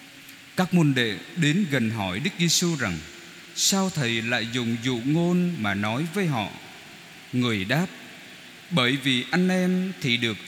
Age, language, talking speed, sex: 20-39, Vietnamese, 155 wpm, male